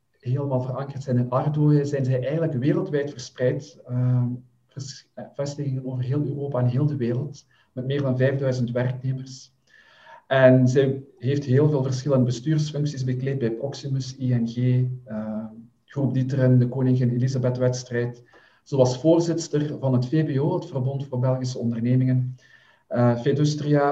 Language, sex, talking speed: English, male, 140 wpm